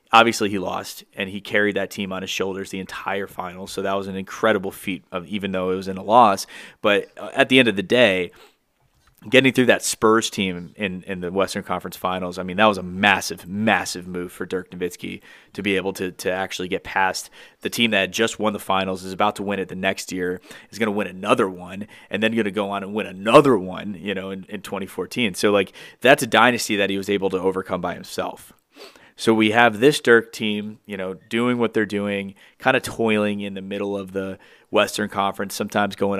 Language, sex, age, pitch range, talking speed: English, male, 30-49, 95-110 Hz, 230 wpm